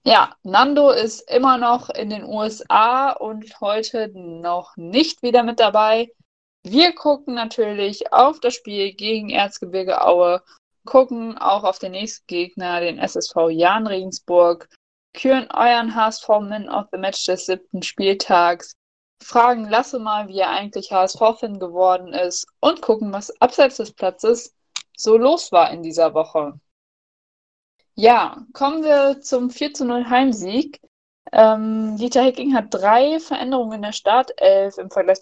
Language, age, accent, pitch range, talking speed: German, 20-39, German, 185-250 Hz, 145 wpm